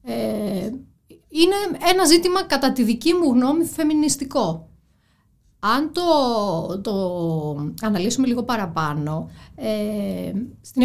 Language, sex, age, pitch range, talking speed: Greek, female, 30-49, 195-290 Hz, 100 wpm